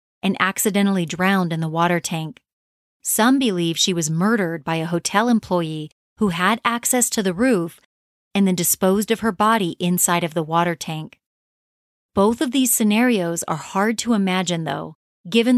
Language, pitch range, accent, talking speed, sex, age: English, 170-225 Hz, American, 165 wpm, female, 30-49